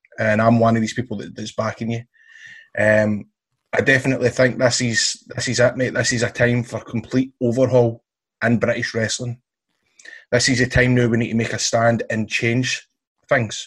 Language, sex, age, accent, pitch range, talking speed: English, male, 20-39, British, 110-120 Hz, 195 wpm